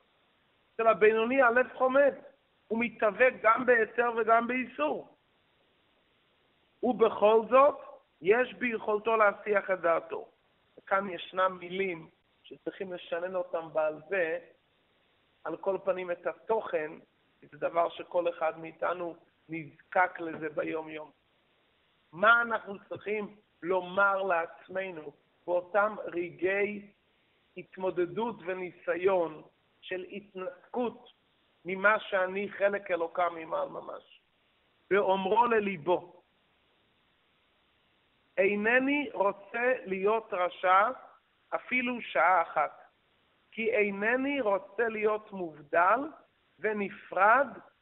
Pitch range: 175-230 Hz